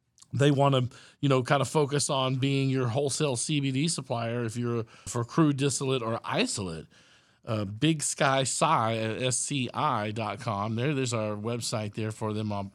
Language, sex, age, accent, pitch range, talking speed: English, male, 50-69, American, 120-150 Hz, 160 wpm